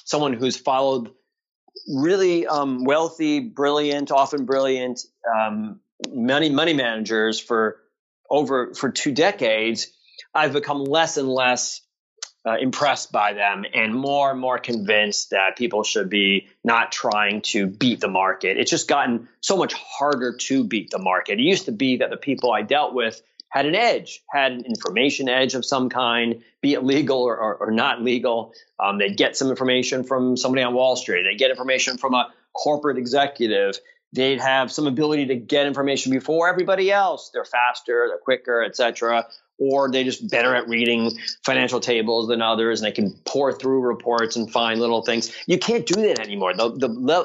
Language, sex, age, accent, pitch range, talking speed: English, male, 30-49, American, 115-150 Hz, 175 wpm